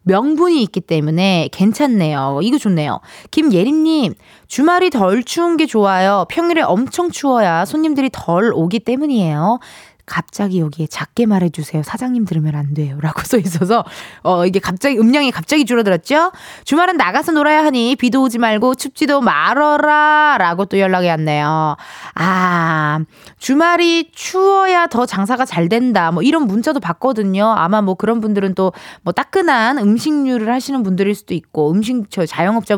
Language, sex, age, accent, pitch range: Korean, female, 20-39, native, 185-285 Hz